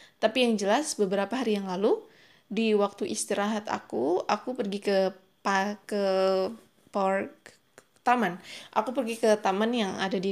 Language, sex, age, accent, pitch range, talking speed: Indonesian, female, 20-39, native, 205-260 Hz, 145 wpm